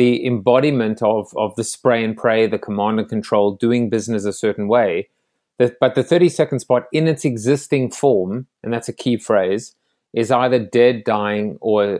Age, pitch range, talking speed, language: 30-49, 110-135 Hz, 185 wpm, English